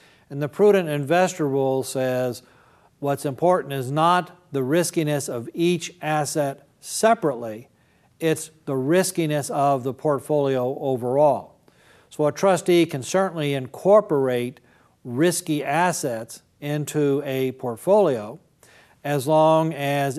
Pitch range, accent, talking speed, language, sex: 125-155 Hz, American, 110 wpm, English, male